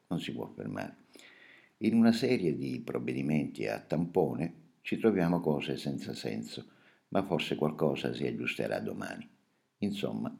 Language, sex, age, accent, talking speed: Italian, male, 60-79, native, 135 wpm